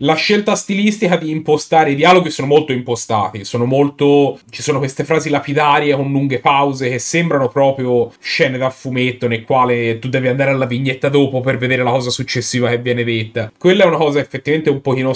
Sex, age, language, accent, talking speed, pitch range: male, 30-49, Italian, native, 195 wpm, 120-145 Hz